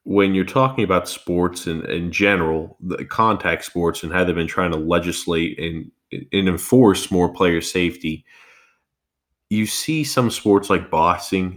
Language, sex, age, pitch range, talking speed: English, male, 20-39, 85-95 Hz, 155 wpm